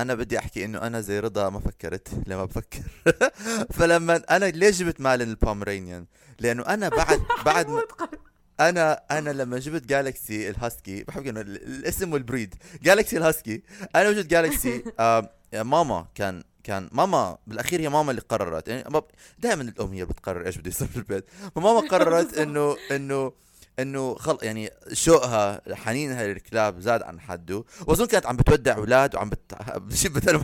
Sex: male